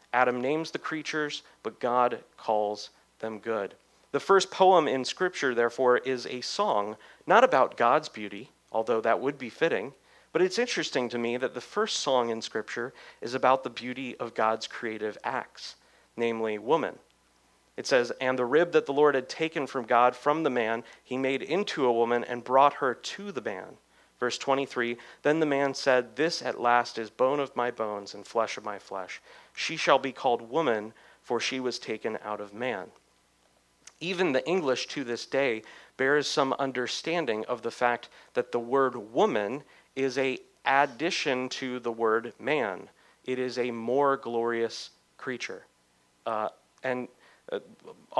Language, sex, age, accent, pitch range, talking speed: English, male, 40-59, American, 115-135 Hz, 170 wpm